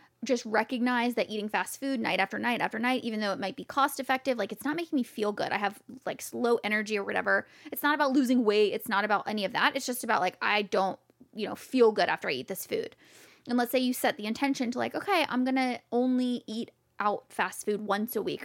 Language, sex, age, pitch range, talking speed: English, female, 20-39, 215-275 Hz, 255 wpm